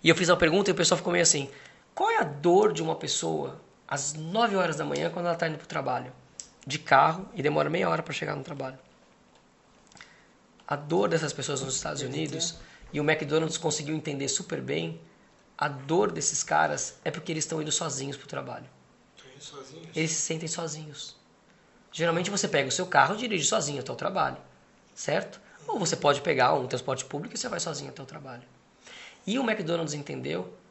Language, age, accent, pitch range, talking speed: Portuguese, 20-39, Brazilian, 145-180 Hz, 200 wpm